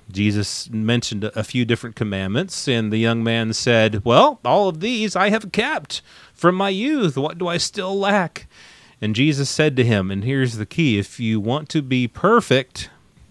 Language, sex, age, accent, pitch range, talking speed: English, male, 30-49, American, 110-145 Hz, 185 wpm